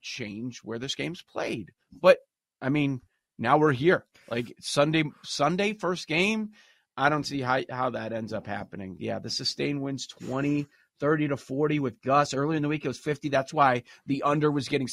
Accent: American